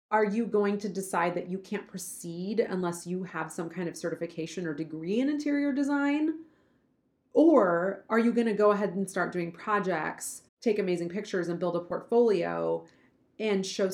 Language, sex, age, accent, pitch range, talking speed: English, female, 30-49, American, 170-220 Hz, 170 wpm